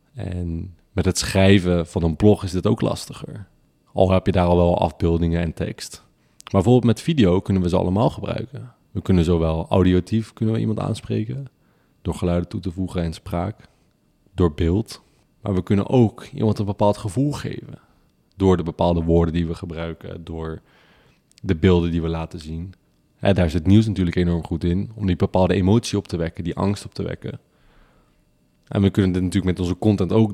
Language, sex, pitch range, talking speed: Dutch, male, 90-105 Hz, 195 wpm